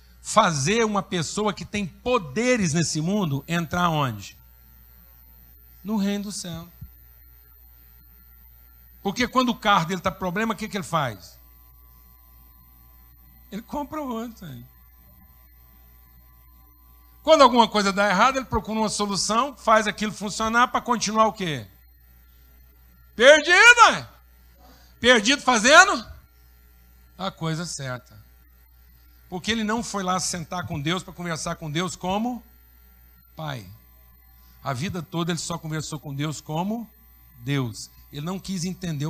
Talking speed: 125 wpm